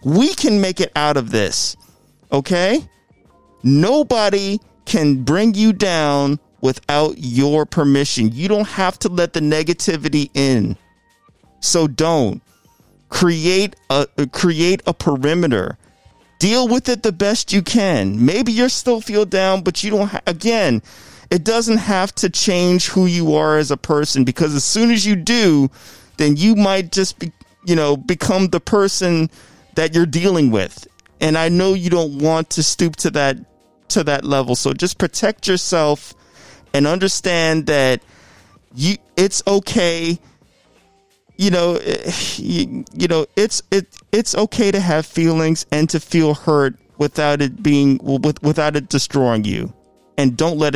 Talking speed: 155 wpm